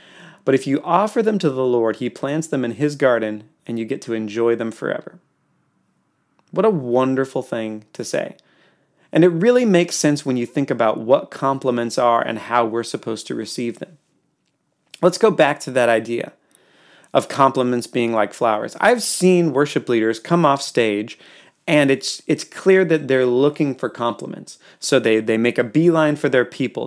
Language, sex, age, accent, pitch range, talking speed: English, male, 30-49, American, 115-155 Hz, 185 wpm